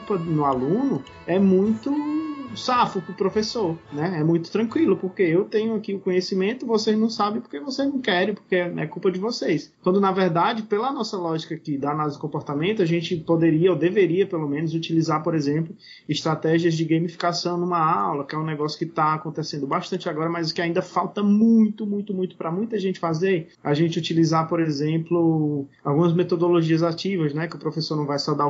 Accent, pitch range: Brazilian, 155-190 Hz